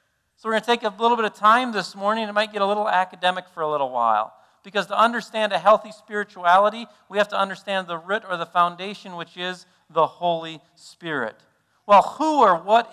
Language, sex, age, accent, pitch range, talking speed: English, male, 40-59, American, 170-215 Hz, 215 wpm